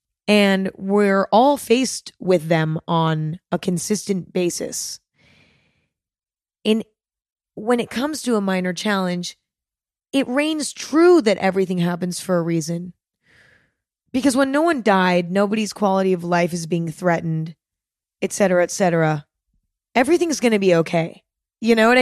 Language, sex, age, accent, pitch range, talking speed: English, female, 20-39, American, 170-225 Hz, 135 wpm